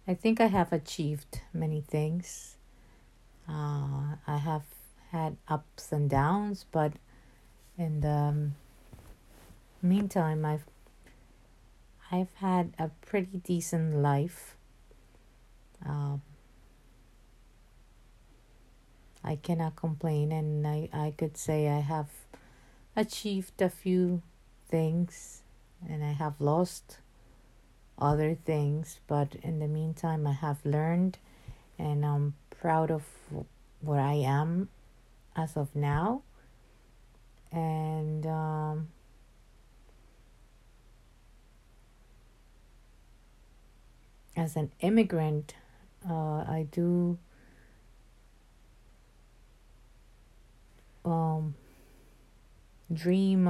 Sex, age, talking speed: female, 50-69, 80 wpm